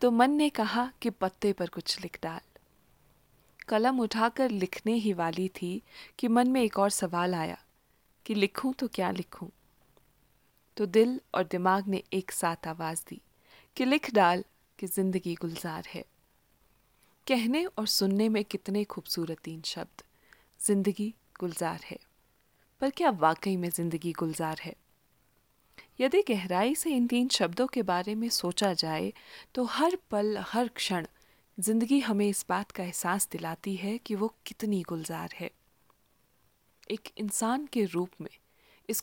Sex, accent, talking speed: female, native, 150 wpm